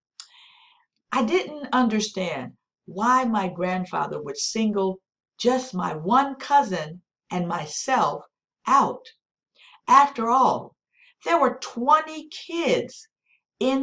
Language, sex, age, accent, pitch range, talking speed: English, female, 50-69, American, 185-275 Hz, 95 wpm